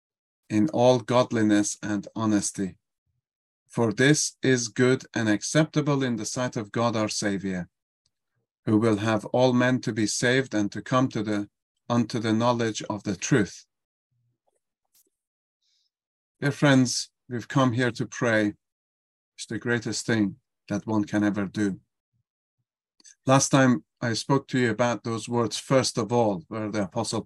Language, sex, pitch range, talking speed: English, male, 105-130 Hz, 150 wpm